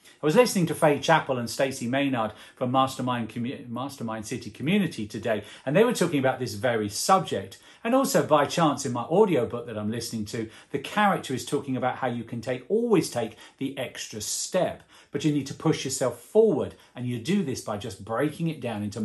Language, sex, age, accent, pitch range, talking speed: English, male, 40-59, British, 110-160 Hz, 210 wpm